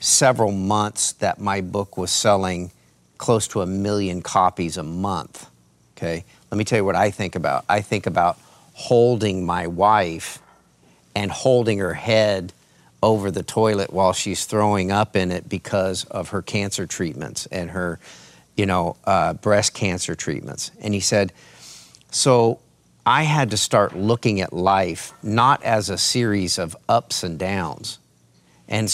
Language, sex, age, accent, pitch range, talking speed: English, male, 40-59, American, 90-110 Hz, 155 wpm